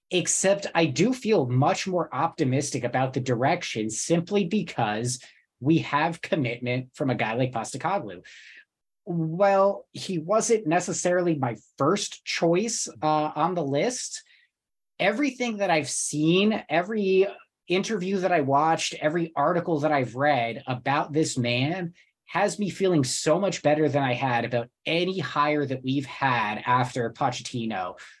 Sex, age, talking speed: male, 30-49, 140 wpm